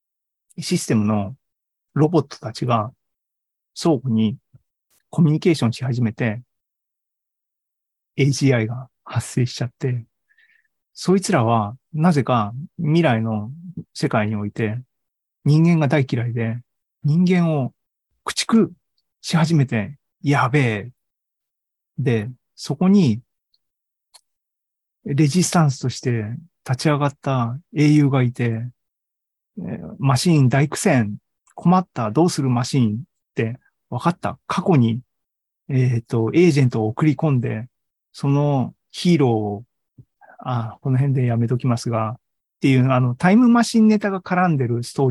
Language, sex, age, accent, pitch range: Japanese, male, 40-59, native, 115-160 Hz